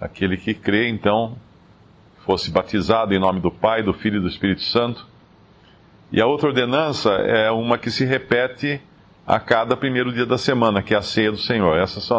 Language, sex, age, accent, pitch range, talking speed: Portuguese, male, 50-69, Brazilian, 100-125 Hz, 190 wpm